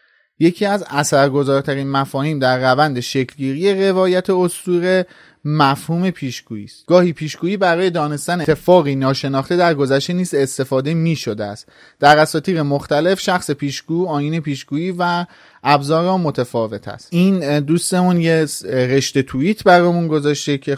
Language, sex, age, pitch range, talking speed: Persian, male, 30-49, 130-170 Hz, 125 wpm